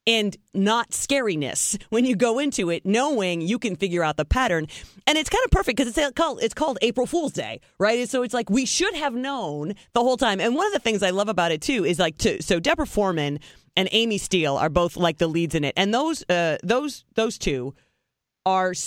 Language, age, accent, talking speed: English, 30-49, American, 230 wpm